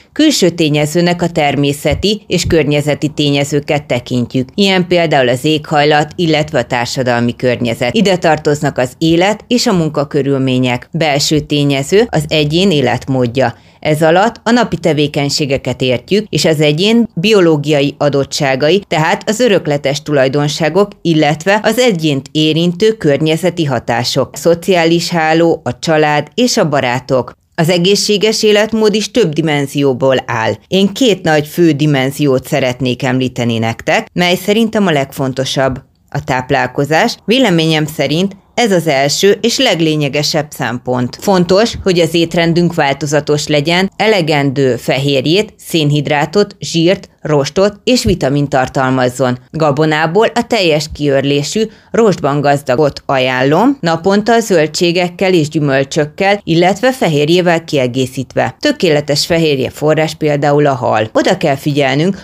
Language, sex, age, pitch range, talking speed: Hungarian, female, 30-49, 140-180 Hz, 120 wpm